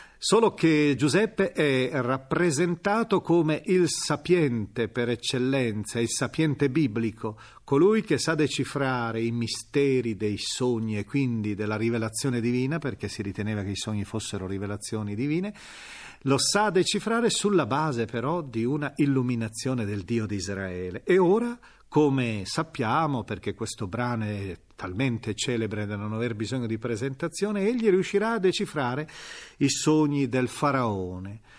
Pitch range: 110-160 Hz